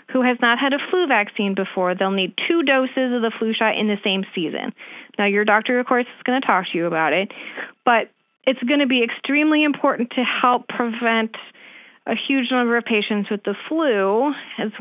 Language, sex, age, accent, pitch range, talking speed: English, female, 30-49, American, 210-260 Hz, 210 wpm